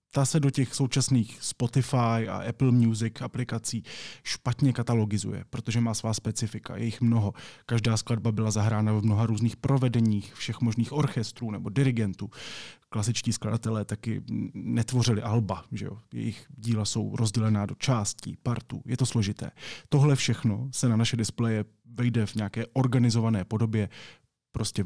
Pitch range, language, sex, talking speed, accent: 110-130 Hz, Czech, male, 145 wpm, native